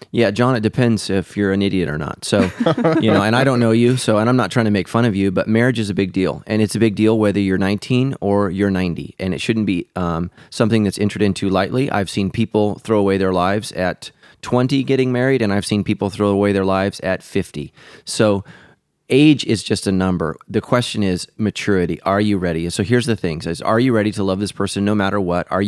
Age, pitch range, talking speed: 30-49, 95-115 Hz, 245 wpm